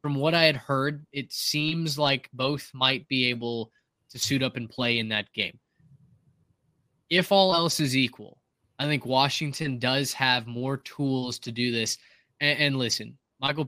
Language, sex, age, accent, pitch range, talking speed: English, male, 20-39, American, 120-140 Hz, 170 wpm